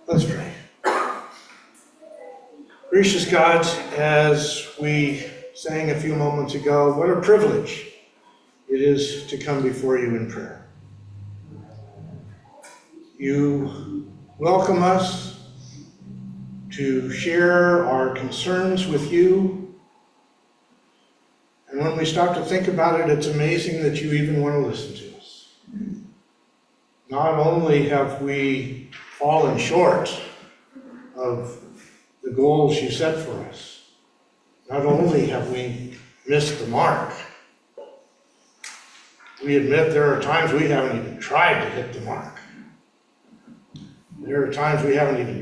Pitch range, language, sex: 135-185 Hz, English, male